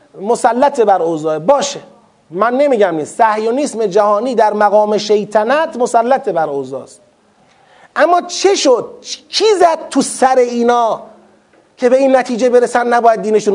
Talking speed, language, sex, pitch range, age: 135 wpm, Persian, male, 215-285 Hz, 40-59